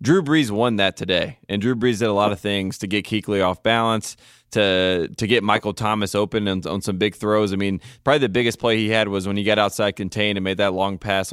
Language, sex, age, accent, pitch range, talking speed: English, male, 20-39, American, 95-110 Hz, 255 wpm